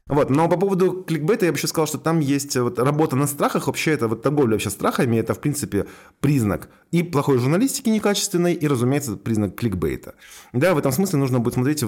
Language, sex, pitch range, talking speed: Russian, male, 95-130 Hz, 205 wpm